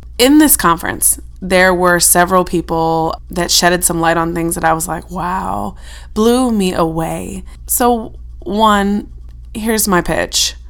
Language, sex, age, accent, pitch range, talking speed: English, female, 20-39, American, 165-200 Hz, 145 wpm